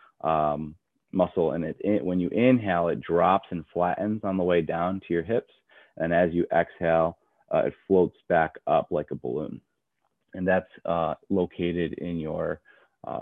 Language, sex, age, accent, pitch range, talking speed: English, male, 30-49, American, 90-105 Hz, 170 wpm